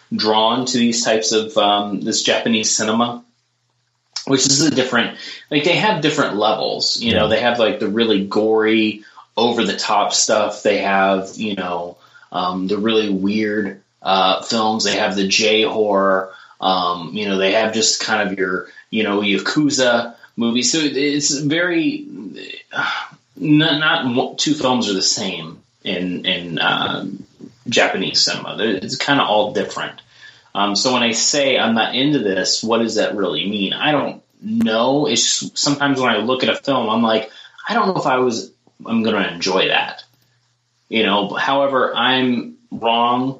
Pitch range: 100-130 Hz